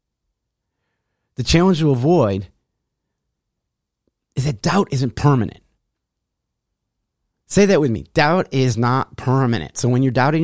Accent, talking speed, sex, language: American, 120 wpm, male, English